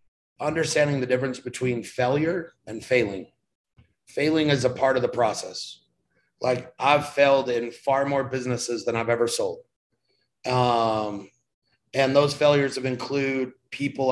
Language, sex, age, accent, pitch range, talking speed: English, male, 30-49, American, 120-140 Hz, 135 wpm